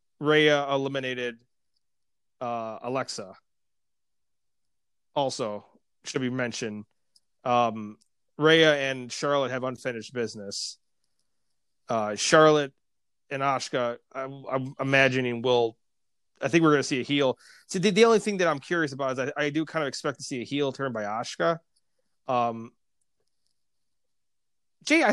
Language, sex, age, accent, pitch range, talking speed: English, male, 30-49, American, 130-185 Hz, 135 wpm